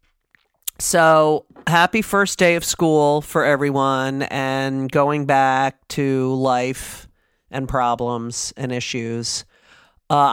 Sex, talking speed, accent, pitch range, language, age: male, 105 wpm, American, 125-165 Hz, English, 40-59